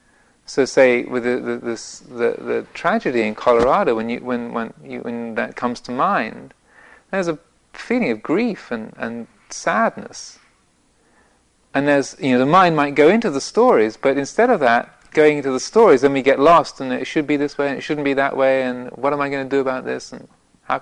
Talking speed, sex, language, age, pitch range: 215 wpm, male, English, 40-59, 125-155 Hz